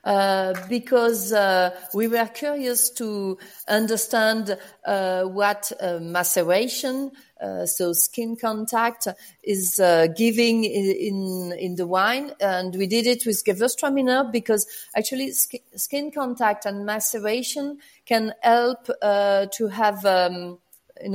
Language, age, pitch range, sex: English, 40-59, 190-235 Hz, female